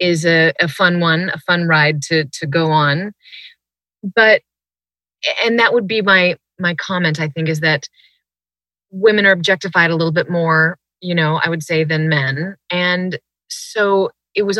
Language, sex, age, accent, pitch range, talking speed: English, female, 30-49, American, 155-190 Hz, 175 wpm